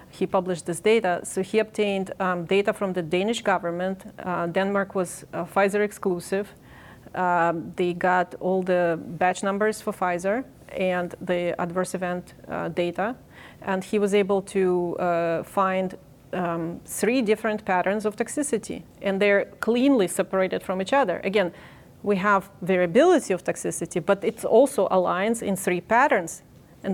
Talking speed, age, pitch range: 150 wpm, 30-49, 180-205 Hz